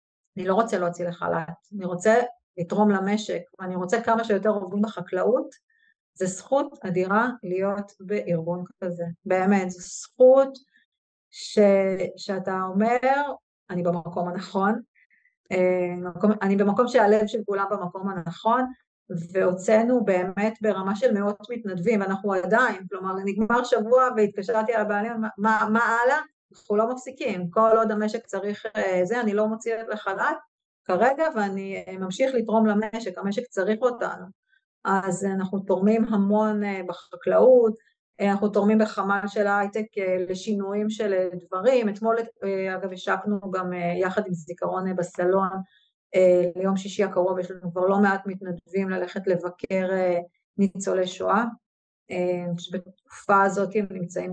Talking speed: 125 wpm